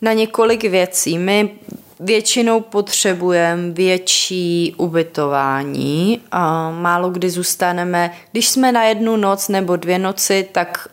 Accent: native